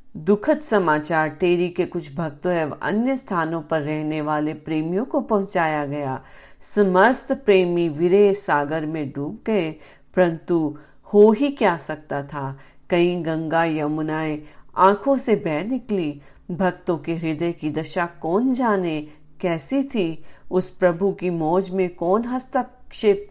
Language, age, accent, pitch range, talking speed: Hindi, 40-59, native, 160-205 Hz, 130 wpm